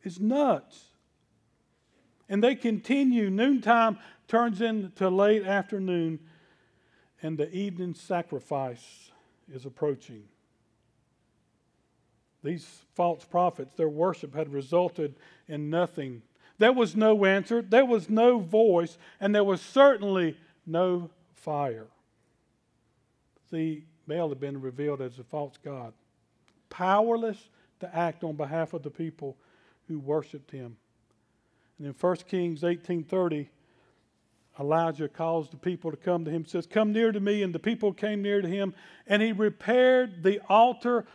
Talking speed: 130 wpm